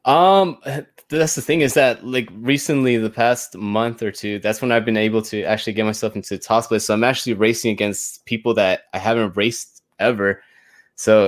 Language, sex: English, male